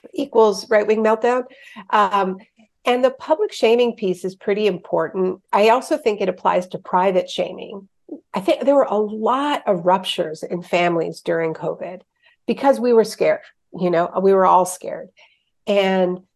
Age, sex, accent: 50-69, female, American